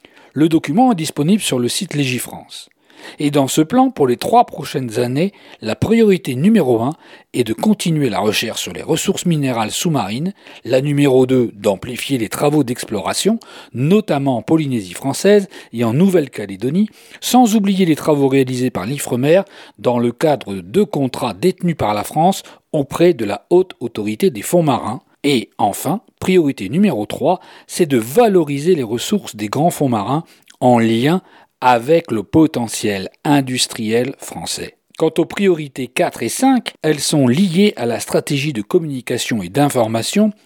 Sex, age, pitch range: male, 40-59, 125-180 Hz